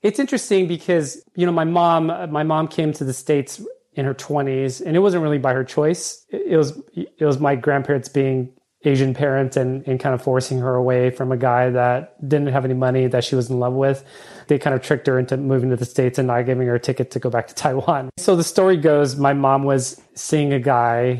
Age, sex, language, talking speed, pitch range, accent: 30-49, male, English, 240 wpm, 130-150 Hz, American